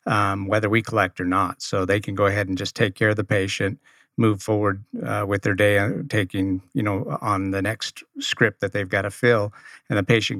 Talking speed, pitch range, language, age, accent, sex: 225 wpm, 95-110 Hz, English, 50-69, American, male